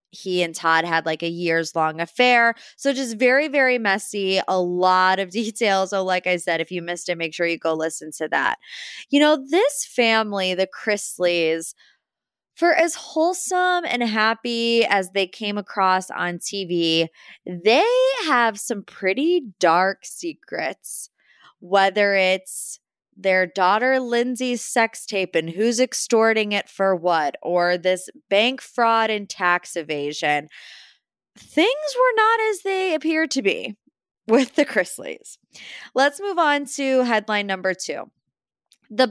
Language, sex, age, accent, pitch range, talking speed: English, female, 20-39, American, 180-250 Hz, 145 wpm